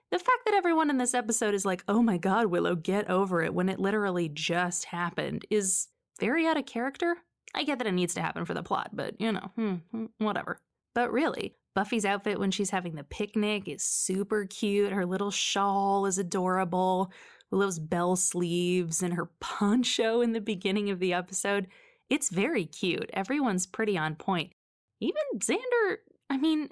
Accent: American